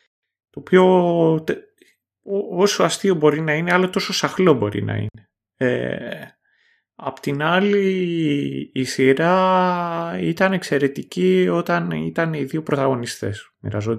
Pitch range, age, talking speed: 115-165 Hz, 30-49, 125 wpm